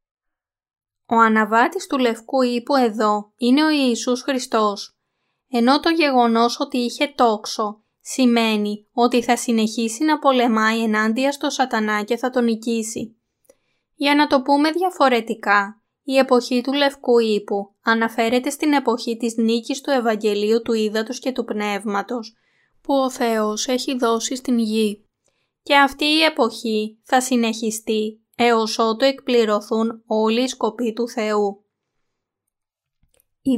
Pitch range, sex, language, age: 220-265 Hz, female, Greek, 20-39